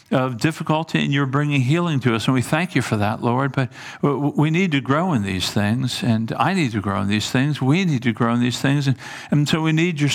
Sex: male